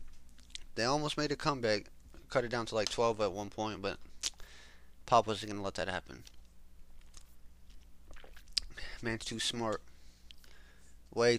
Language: English